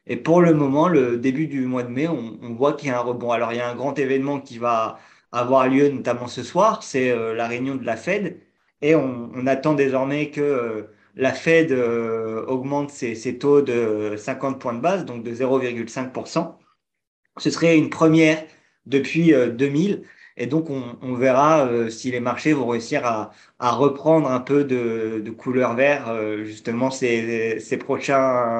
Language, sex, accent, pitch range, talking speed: French, male, French, 120-140 Hz, 185 wpm